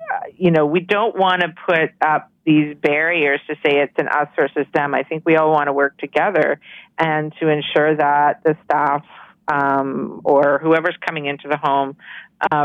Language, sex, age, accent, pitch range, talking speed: English, female, 50-69, American, 150-180 Hz, 185 wpm